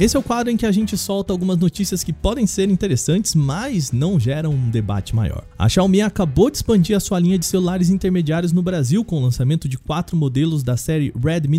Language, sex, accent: Portuguese, male, Brazilian